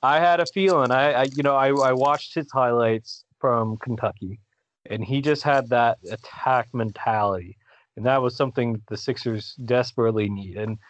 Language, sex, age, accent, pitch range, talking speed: English, male, 30-49, American, 110-130 Hz, 170 wpm